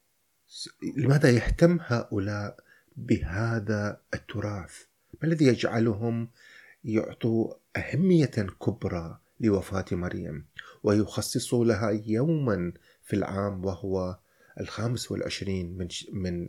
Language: Arabic